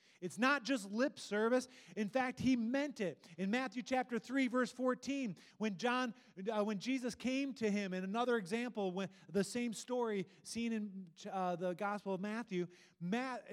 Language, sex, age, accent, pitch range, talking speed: English, male, 30-49, American, 150-225 Hz, 175 wpm